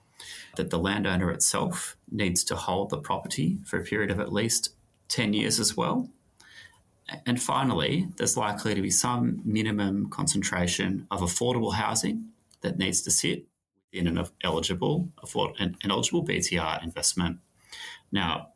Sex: male